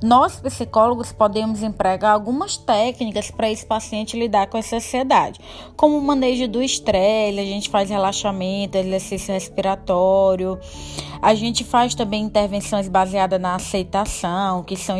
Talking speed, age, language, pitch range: 135 wpm, 20-39, Portuguese, 190-245 Hz